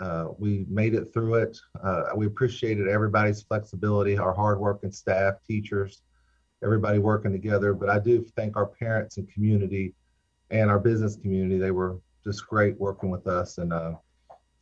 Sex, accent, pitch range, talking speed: male, American, 100-120 Hz, 165 wpm